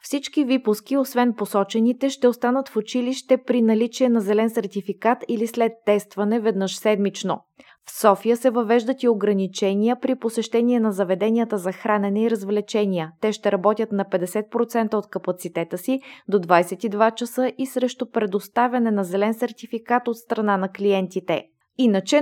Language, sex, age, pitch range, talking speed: Bulgarian, female, 20-39, 200-245 Hz, 145 wpm